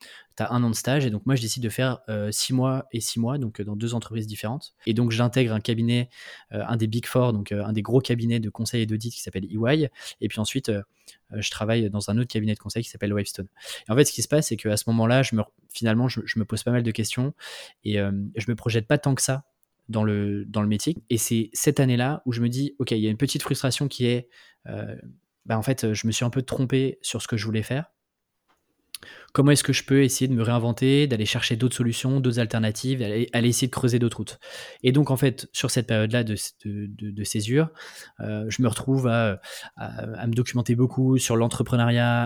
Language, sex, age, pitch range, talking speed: French, male, 20-39, 110-130 Hz, 250 wpm